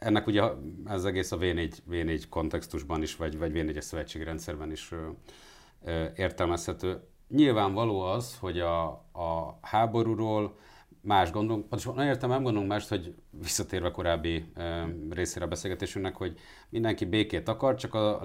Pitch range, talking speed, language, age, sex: 80-95 Hz, 150 wpm, Hungarian, 50-69, male